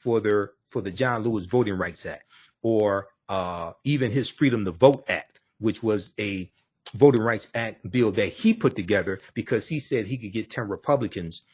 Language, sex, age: English, male, 40-59